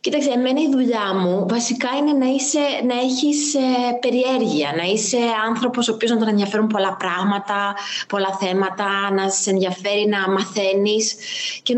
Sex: female